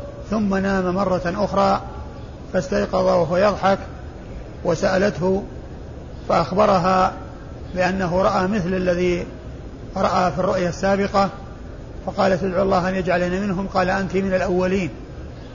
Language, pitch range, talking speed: Arabic, 175-195 Hz, 105 wpm